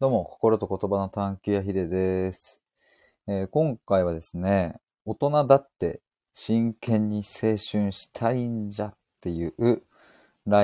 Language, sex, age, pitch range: Japanese, male, 20-39, 90-115 Hz